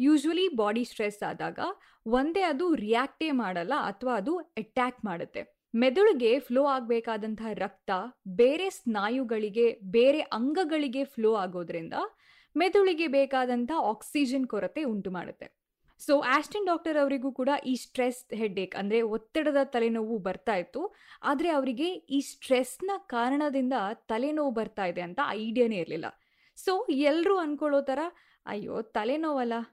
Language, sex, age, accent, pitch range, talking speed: Kannada, female, 20-39, native, 220-300 Hz, 115 wpm